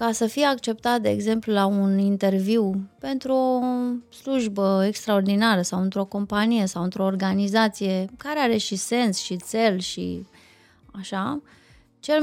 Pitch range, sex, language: 185-235 Hz, female, Romanian